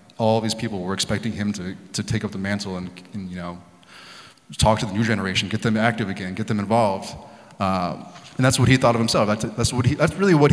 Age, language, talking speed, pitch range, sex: 20-39, English, 240 wpm, 105-125 Hz, male